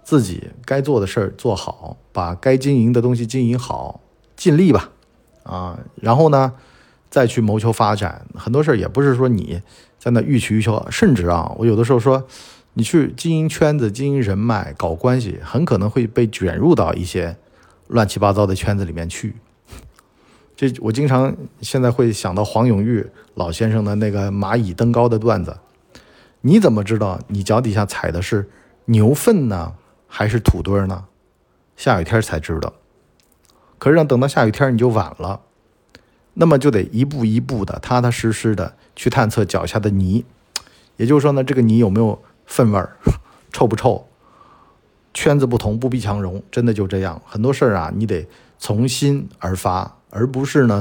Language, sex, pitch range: Chinese, male, 100-125 Hz